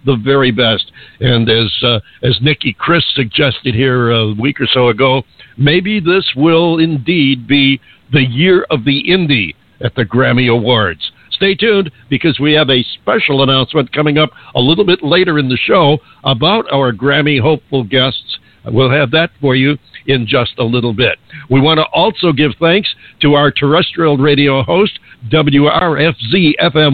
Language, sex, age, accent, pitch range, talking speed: English, male, 60-79, American, 130-160 Hz, 165 wpm